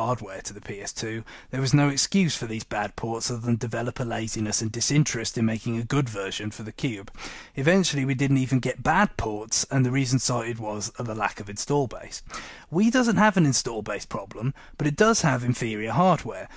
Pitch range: 115-155 Hz